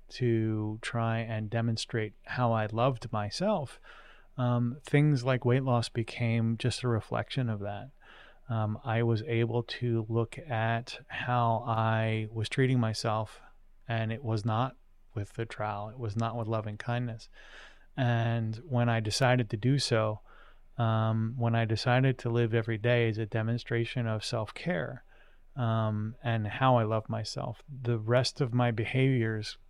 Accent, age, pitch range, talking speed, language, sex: American, 30-49, 110-125 Hz, 150 wpm, English, male